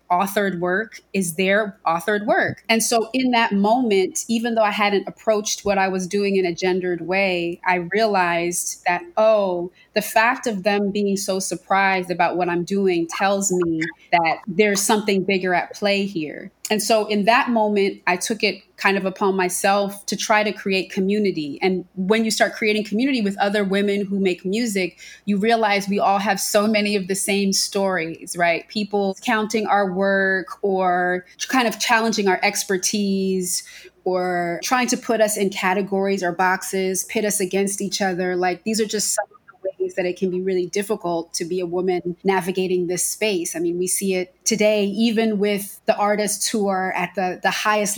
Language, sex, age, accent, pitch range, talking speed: Czech, female, 20-39, American, 185-210 Hz, 185 wpm